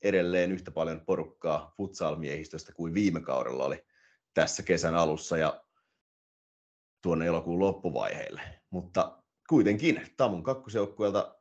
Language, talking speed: Finnish, 105 wpm